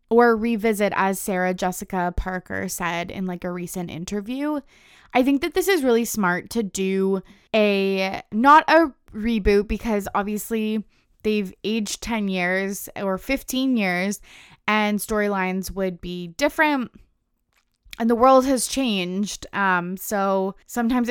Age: 20-39